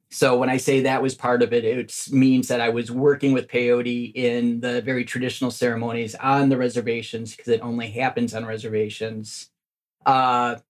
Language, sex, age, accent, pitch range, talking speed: English, male, 30-49, American, 120-135 Hz, 180 wpm